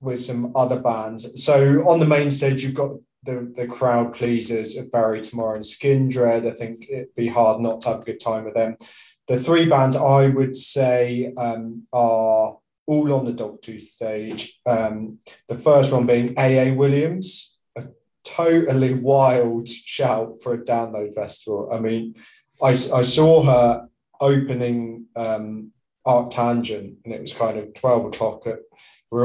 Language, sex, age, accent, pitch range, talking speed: English, male, 20-39, British, 115-135 Hz, 160 wpm